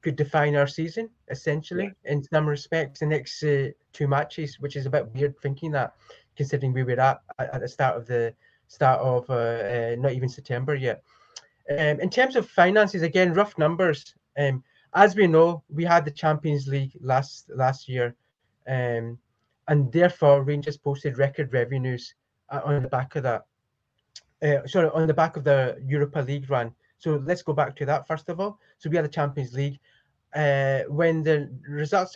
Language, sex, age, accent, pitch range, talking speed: English, male, 20-39, British, 130-160 Hz, 185 wpm